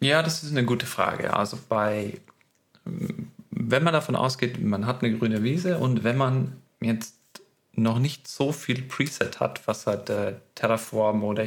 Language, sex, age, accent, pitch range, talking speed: German, male, 40-59, German, 110-130 Hz, 165 wpm